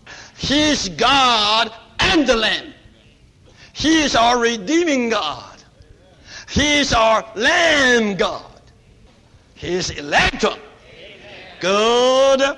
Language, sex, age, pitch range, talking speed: English, male, 60-79, 150-220 Hz, 95 wpm